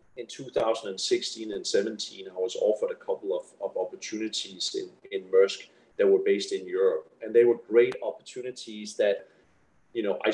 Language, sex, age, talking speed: English, male, 30-49, 170 wpm